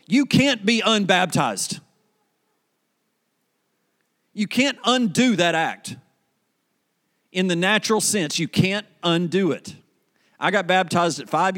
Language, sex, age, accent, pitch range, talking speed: English, male, 40-59, American, 155-200 Hz, 115 wpm